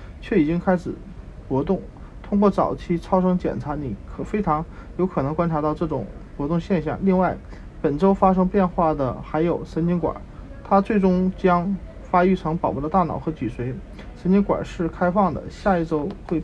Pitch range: 150-190 Hz